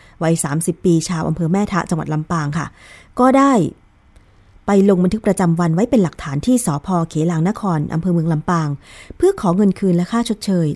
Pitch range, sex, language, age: 145-210 Hz, female, Thai, 20-39